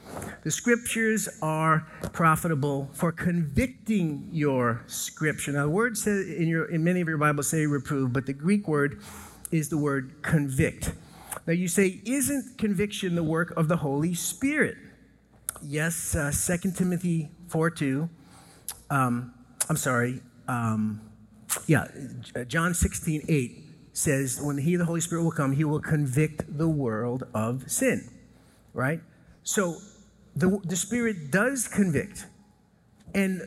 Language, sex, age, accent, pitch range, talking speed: English, male, 50-69, American, 140-180 Hz, 135 wpm